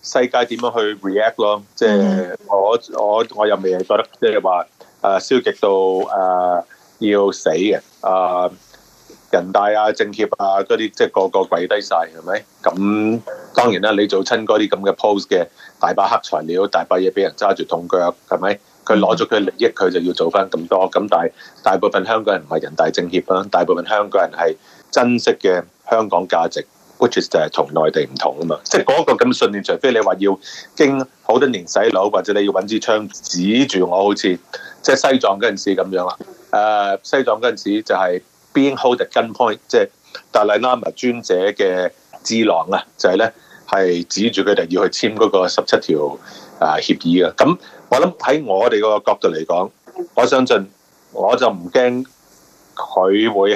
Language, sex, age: Chinese, male, 30-49